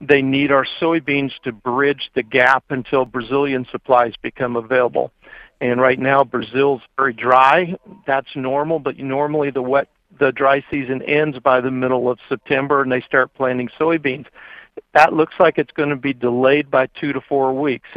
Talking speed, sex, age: 175 wpm, male, 50-69